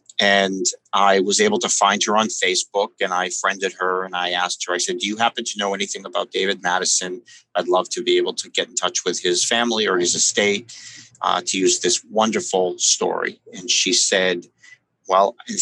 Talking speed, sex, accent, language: 210 wpm, male, American, English